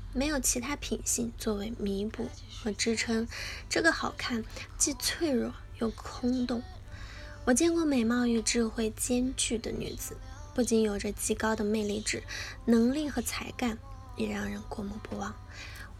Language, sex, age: Chinese, female, 10-29